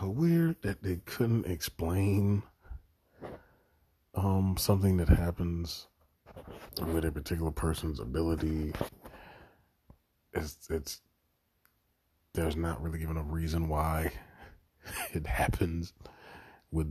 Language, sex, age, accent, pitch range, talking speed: English, male, 30-49, American, 70-85 Hz, 90 wpm